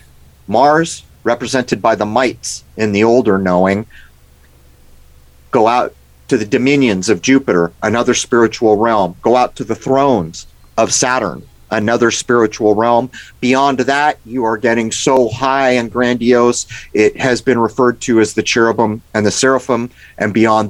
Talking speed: 150 wpm